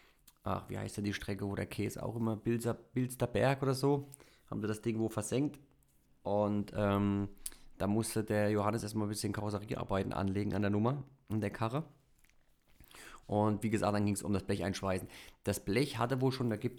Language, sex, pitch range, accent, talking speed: German, male, 100-115 Hz, German, 195 wpm